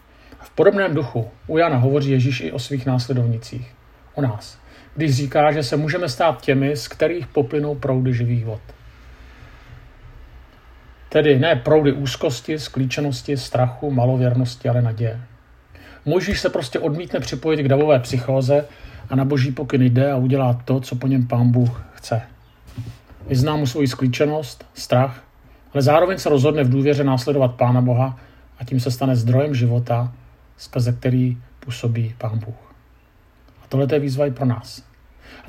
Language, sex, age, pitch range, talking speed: Czech, male, 50-69, 120-145 Hz, 150 wpm